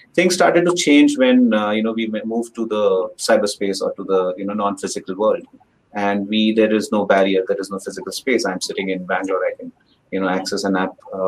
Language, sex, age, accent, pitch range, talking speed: English, male, 30-49, Indian, 105-145 Hz, 235 wpm